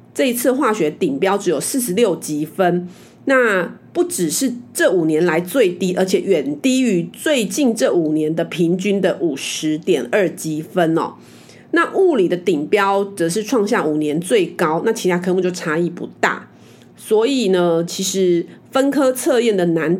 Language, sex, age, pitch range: Chinese, female, 30-49, 170-235 Hz